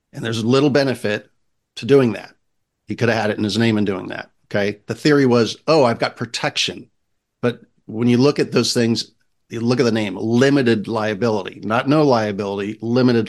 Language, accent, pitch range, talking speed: English, American, 110-130 Hz, 200 wpm